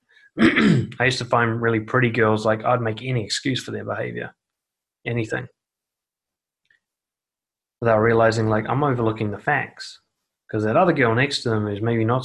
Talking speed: 160 wpm